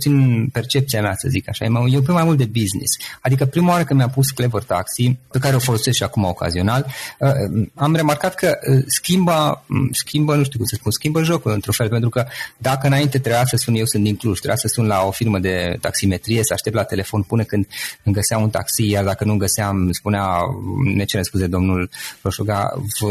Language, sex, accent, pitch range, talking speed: Romanian, male, native, 105-135 Hz, 215 wpm